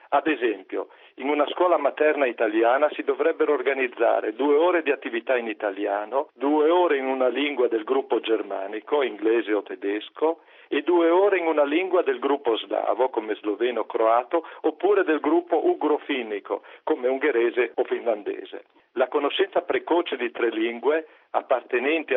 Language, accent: Italian, native